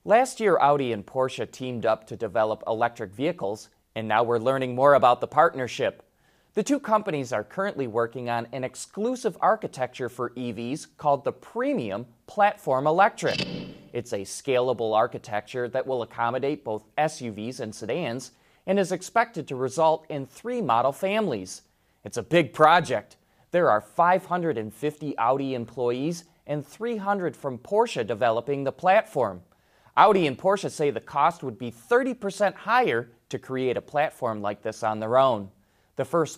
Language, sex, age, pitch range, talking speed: English, male, 30-49, 115-160 Hz, 155 wpm